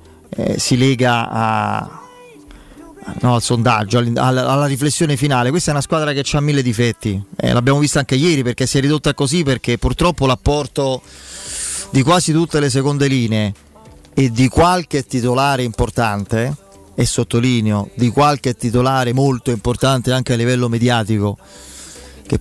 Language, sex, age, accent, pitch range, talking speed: Italian, male, 30-49, native, 115-140 Hz, 145 wpm